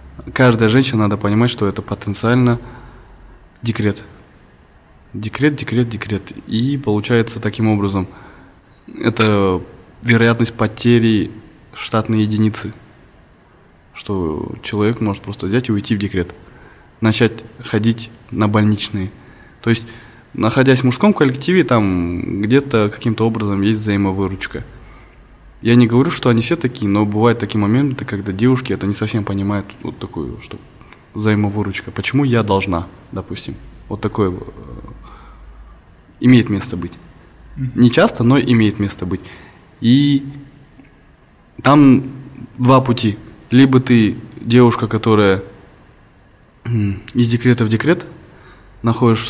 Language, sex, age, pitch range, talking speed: Russian, male, 20-39, 100-120 Hz, 115 wpm